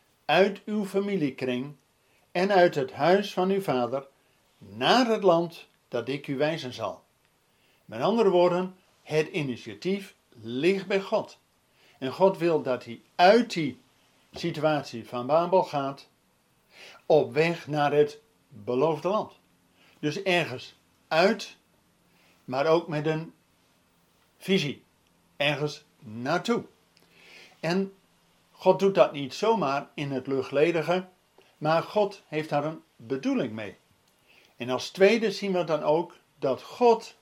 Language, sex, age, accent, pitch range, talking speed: Dutch, male, 50-69, Dutch, 130-185 Hz, 125 wpm